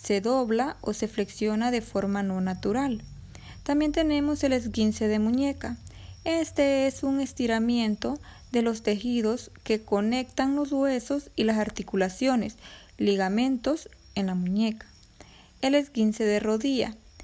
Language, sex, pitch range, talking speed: Spanish, female, 200-275 Hz, 130 wpm